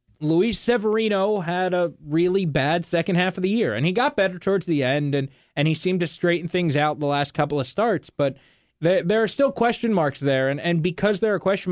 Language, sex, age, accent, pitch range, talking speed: English, male, 20-39, American, 160-225 Hz, 235 wpm